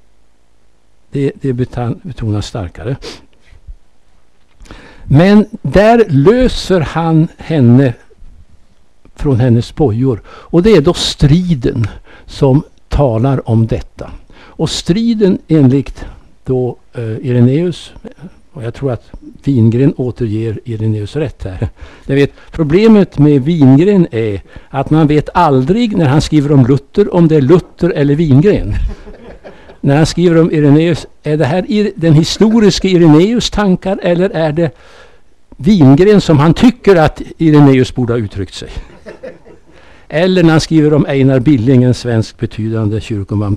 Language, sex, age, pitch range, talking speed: Danish, male, 60-79, 115-160 Hz, 125 wpm